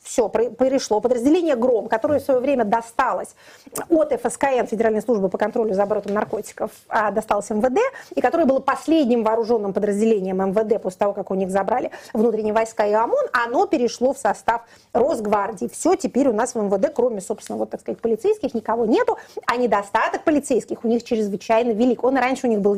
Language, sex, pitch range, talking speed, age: Russian, female, 220-275 Hz, 180 wpm, 30-49